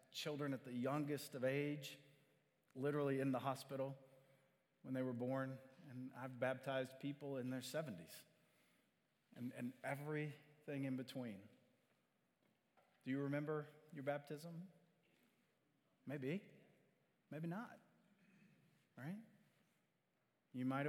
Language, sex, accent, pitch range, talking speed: English, male, American, 135-170 Hz, 105 wpm